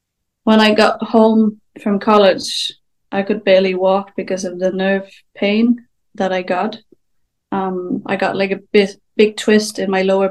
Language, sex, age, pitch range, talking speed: English, female, 20-39, 190-215 Hz, 170 wpm